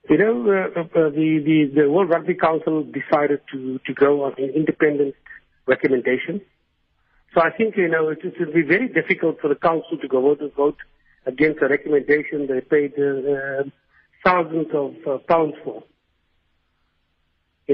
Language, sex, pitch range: English, male, 140-170 Hz